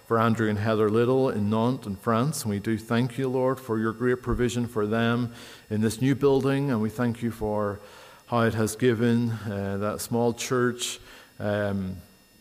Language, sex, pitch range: English, male, 105-120 Hz